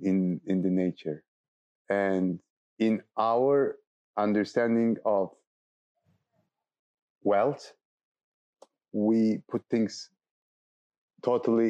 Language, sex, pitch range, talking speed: English, male, 100-125 Hz, 70 wpm